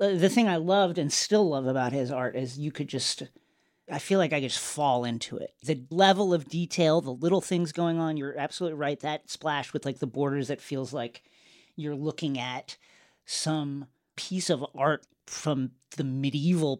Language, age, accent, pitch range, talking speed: English, 40-59, American, 135-175 Hz, 195 wpm